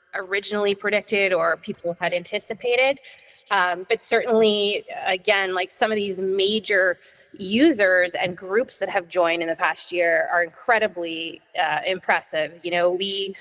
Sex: female